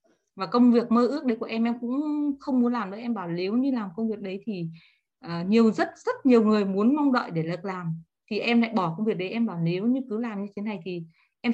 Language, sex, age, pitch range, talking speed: Vietnamese, female, 20-39, 190-240 Hz, 275 wpm